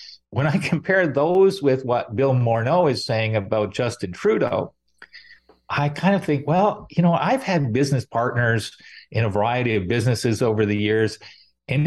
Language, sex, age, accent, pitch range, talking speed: English, male, 40-59, American, 115-150 Hz, 165 wpm